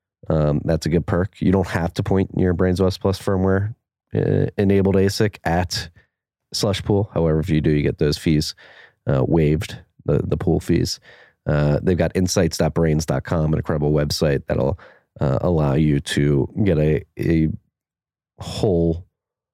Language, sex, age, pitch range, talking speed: English, male, 30-49, 80-100 Hz, 155 wpm